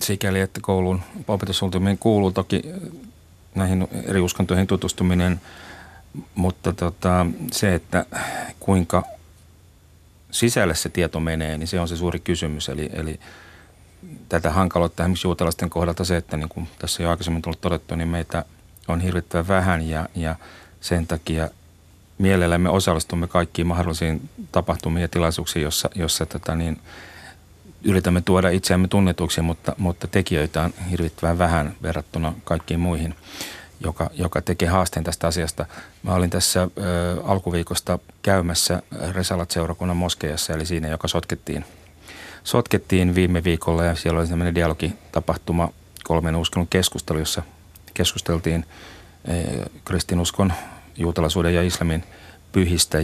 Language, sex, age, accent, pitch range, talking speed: Finnish, male, 40-59, native, 85-90 Hz, 125 wpm